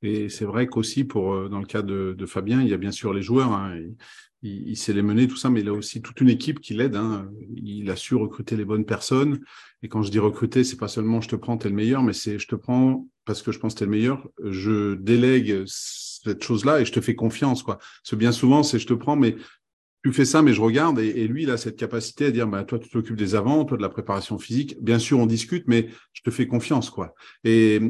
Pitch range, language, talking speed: 105-125 Hz, French, 275 wpm